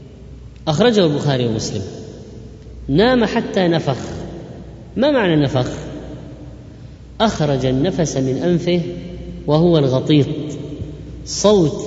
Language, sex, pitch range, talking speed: Arabic, female, 135-180 Hz, 80 wpm